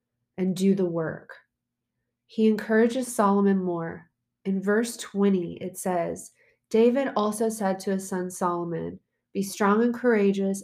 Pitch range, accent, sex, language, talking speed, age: 180-210 Hz, American, female, English, 135 wpm, 20-39